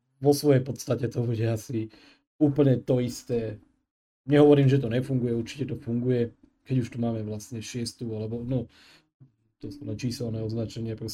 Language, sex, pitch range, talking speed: Slovak, male, 110-130 Hz, 150 wpm